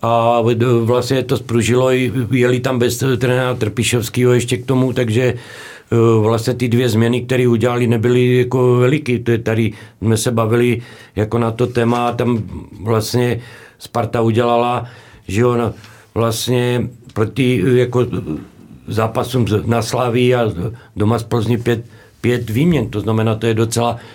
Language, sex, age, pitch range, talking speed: Czech, male, 60-79, 110-125 Hz, 140 wpm